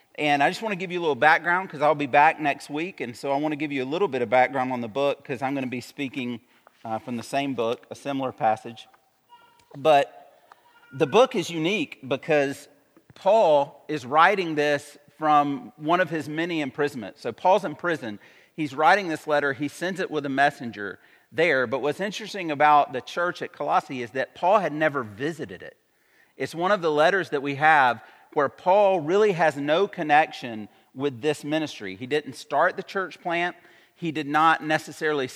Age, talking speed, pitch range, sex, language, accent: 40-59, 200 wpm, 140-170 Hz, male, English, American